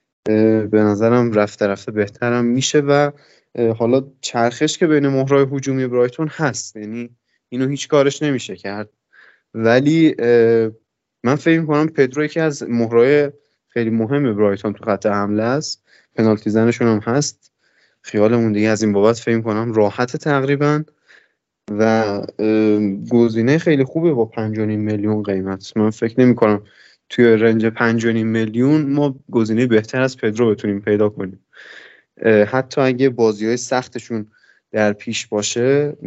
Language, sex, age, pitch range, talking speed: Persian, male, 20-39, 110-135 Hz, 135 wpm